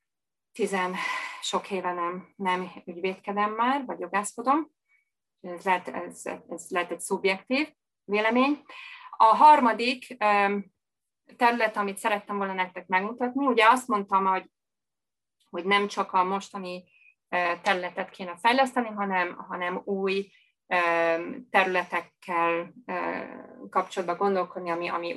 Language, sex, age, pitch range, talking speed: Hungarian, female, 30-49, 180-210 Hz, 100 wpm